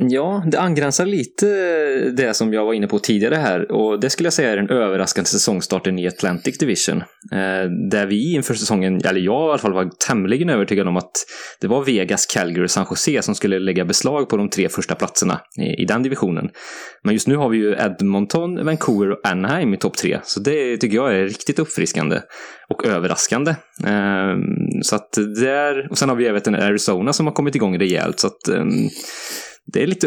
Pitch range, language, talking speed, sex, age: 95-145 Hz, English, 205 wpm, male, 20-39